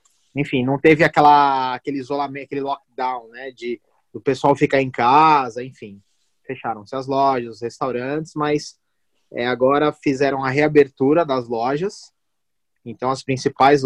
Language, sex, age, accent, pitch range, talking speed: Portuguese, male, 20-39, Brazilian, 115-145 Hz, 130 wpm